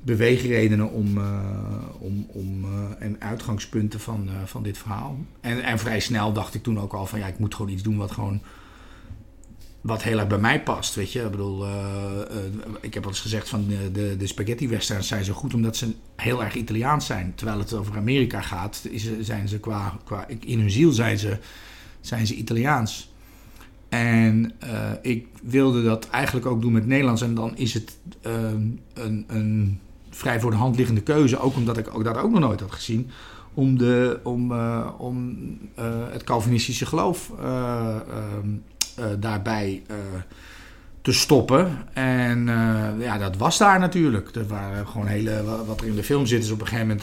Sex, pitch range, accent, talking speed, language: male, 105-120 Hz, Dutch, 185 wpm, Dutch